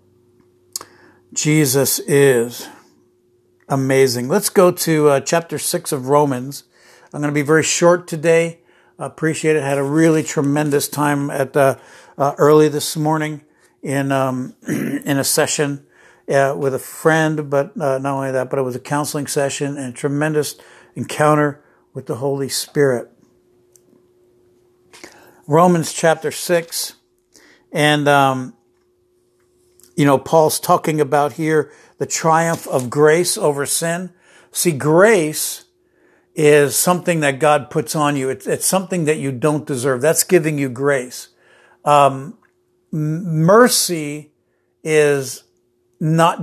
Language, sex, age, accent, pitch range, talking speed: English, male, 60-79, American, 135-165 Hz, 130 wpm